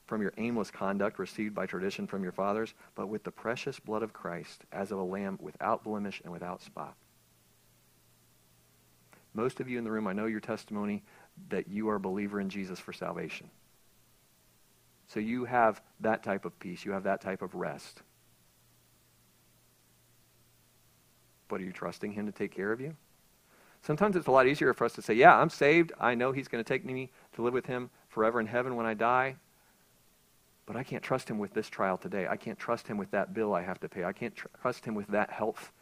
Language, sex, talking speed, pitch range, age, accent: English, male, 210 wpm, 100-150 Hz, 50-69, American